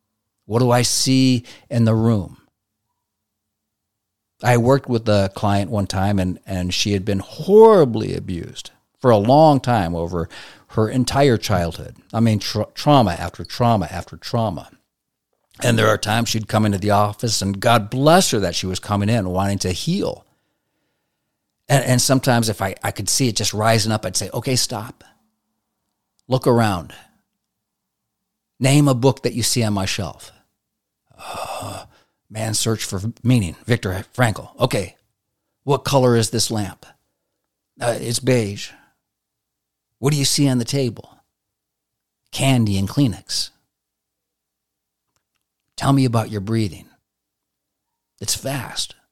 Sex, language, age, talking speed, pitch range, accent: male, English, 50-69, 140 wpm, 100-125 Hz, American